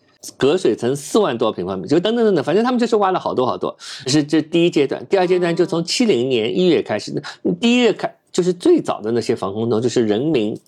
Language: Chinese